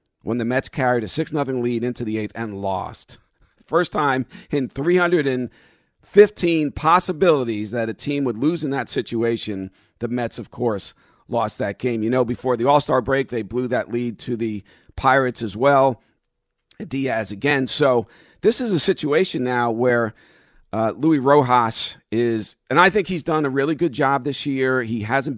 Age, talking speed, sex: 50-69, 175 wpm, male